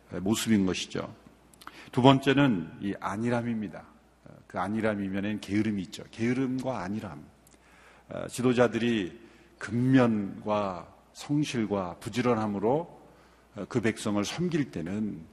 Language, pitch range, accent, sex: Korean, 95-140 Hz, native, male